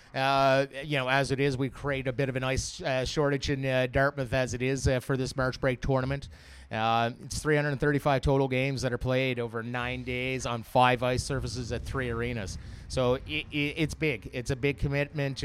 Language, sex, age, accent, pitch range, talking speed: English, male, 30-49, American, 125-140 Hz, 210 wpm